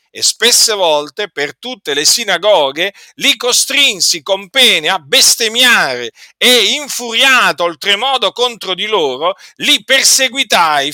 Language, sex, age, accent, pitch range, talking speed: Italian, male, 50-69, native, 180-255 Hz, 115 wpm